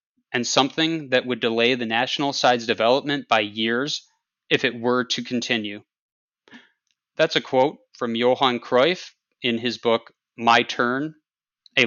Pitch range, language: 125-160 Hz, English